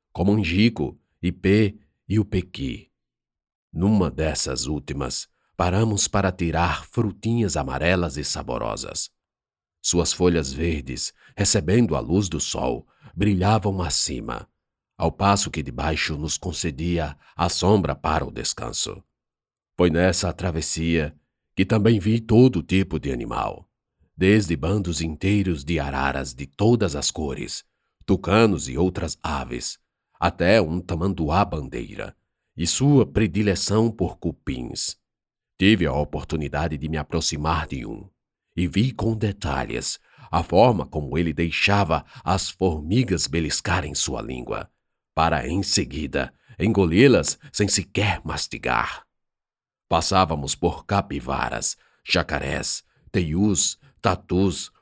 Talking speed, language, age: 115 wpm, Portuguese, 50-69